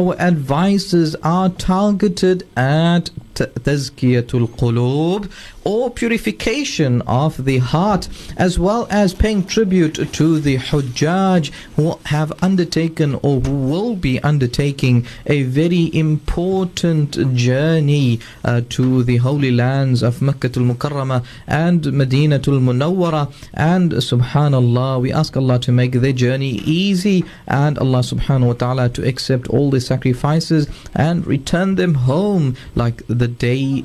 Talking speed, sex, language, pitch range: 130 wpm, male, English, 130-175 Hz